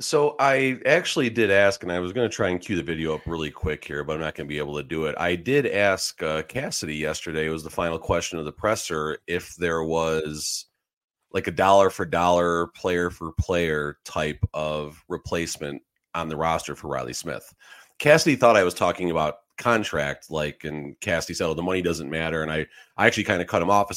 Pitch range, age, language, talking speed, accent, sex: 80-95 Hz, 30-49, English, 215 wpm, American, male